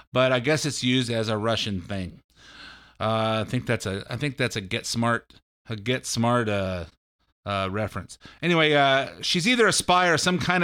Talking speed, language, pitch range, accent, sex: 195 wpm, English, 120-165 Hz, American, male